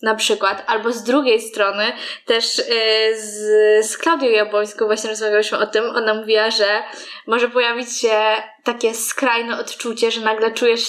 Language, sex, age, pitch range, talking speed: Polish, female, 10-29, 215-255 Hz, 150 wpm